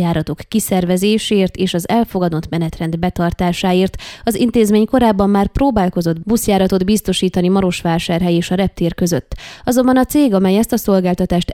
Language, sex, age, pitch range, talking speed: Hungarian, female, 20-39, 175-215 Hz, 135 wpm